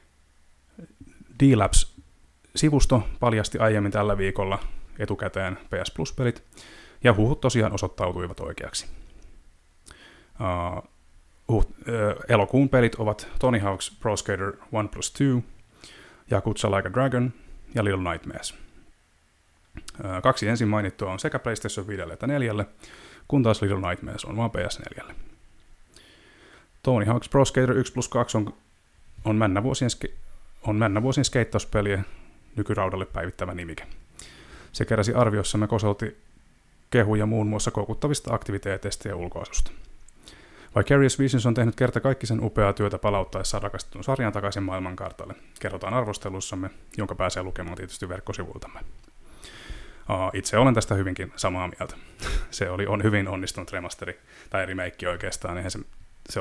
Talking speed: 125 wpm